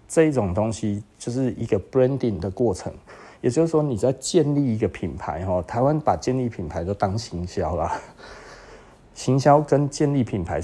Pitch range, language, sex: 95-130 Hz, Chinese, male